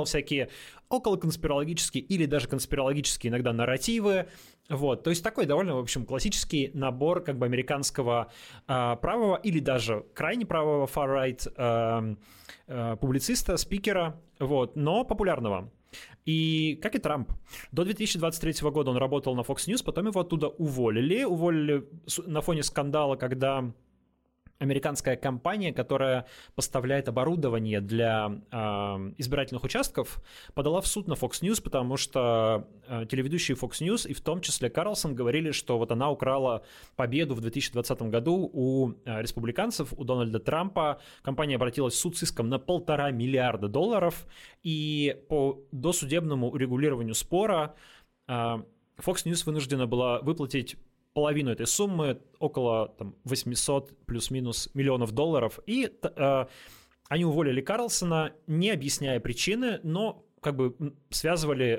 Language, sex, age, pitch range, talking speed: Russian, male, 20-39, 120-160 Hz, 130 wpm